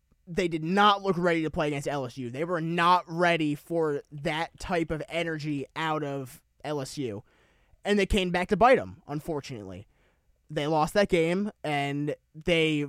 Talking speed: 165 wpm